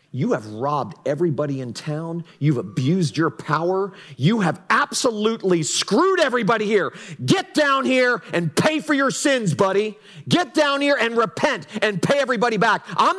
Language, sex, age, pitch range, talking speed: English, male, 40-59, 160-265 Hz, 160 wpm